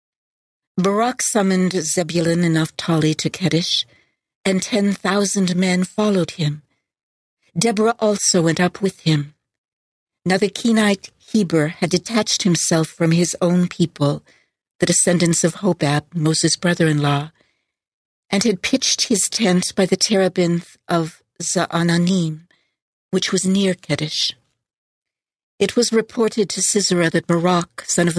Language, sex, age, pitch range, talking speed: English, female, 60-79, 165-190 Hz, 125 wpm